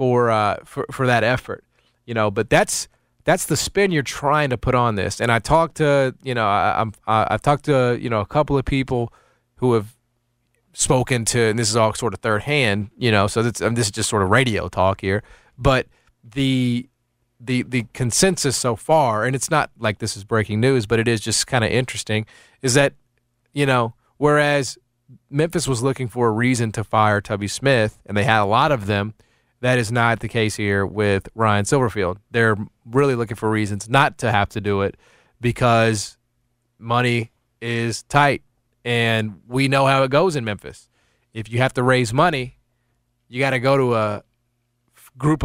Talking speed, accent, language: 200 wpm, American, English